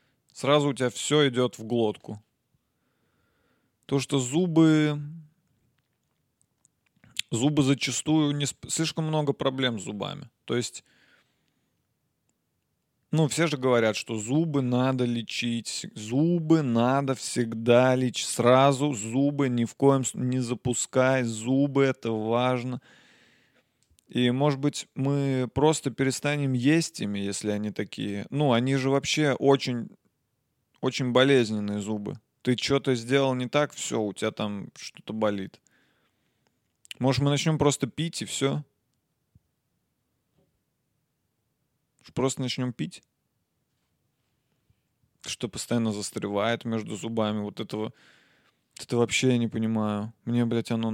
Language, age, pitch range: Russian, 20-39, 115-140 Hz